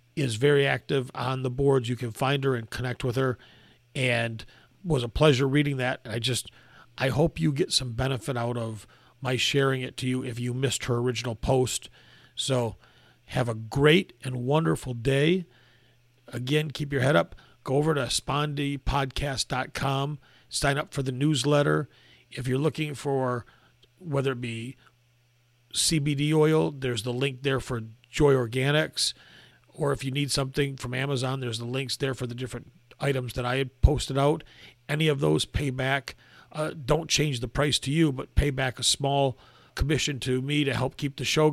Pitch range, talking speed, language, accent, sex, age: 120-145 Hz, 175 wpm, English, American, male, 40-59